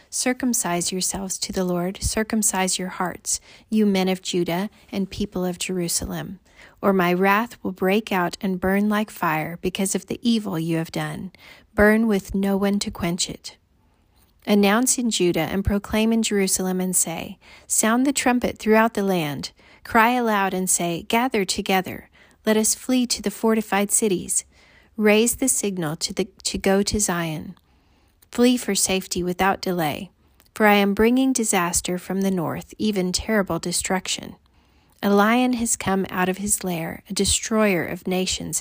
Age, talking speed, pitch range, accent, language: 30-49, 165 wpm, 180-215 Hz, American, English